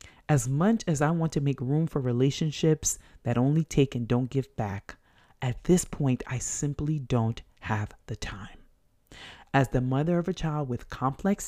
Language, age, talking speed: English, 30-49, 180 wpm